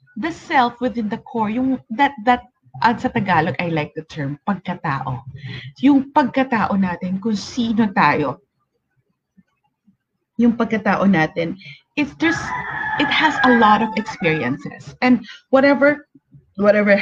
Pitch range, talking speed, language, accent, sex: 180-255 Hz, 125 wpm, English, Filipino, female